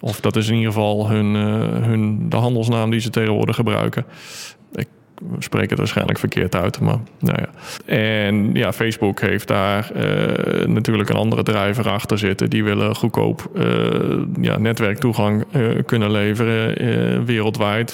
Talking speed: 155 wpm